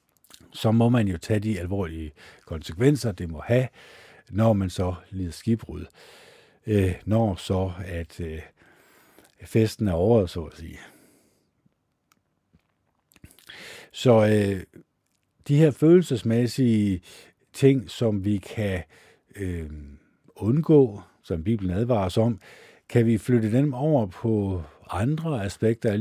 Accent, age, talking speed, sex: native, 60-79, 120 wpm, male